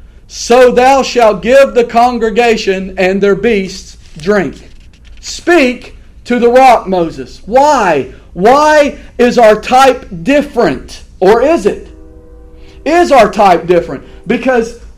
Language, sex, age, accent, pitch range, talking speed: English, male, 50-69, American, 205-280 Hz, 115 wpm